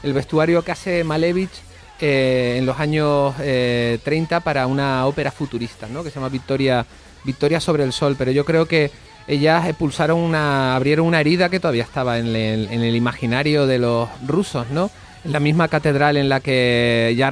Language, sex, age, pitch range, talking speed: Spanish, male, 30-49, 120-150 Hz, 185 wpm